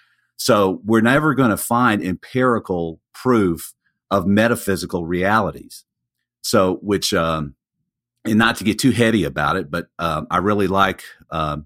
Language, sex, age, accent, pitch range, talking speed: English, male, 50-69, American, 85-110 Hz, 145 wpm